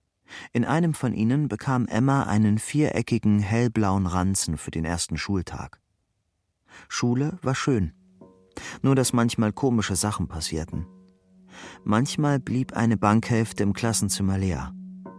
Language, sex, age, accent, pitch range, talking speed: German, male, 40-59, German, 95-115 Hz, 120 wpm